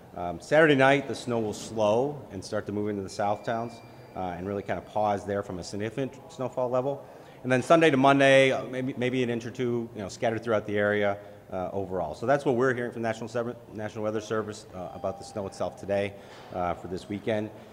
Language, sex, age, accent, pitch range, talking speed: English, male, 30-49, American, 100-125 Hz, 235 wpm